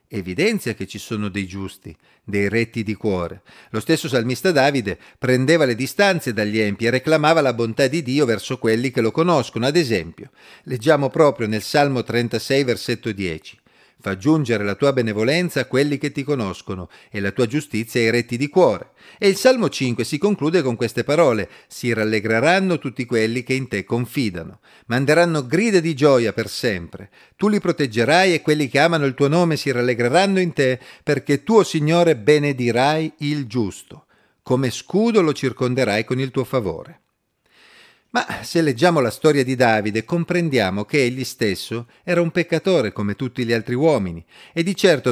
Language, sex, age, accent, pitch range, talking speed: Italian, male, 40-59, native, 115-150 Hz, 175 wpm